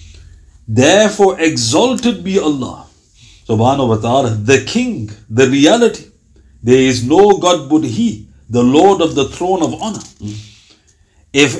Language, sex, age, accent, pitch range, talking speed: English, male, 50-69, Indian, 115-190 Hz, 130 wpm